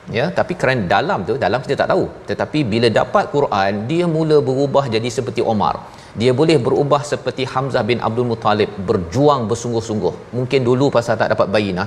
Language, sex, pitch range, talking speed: Malayalam, male, 110-140 Hz, 175 wpm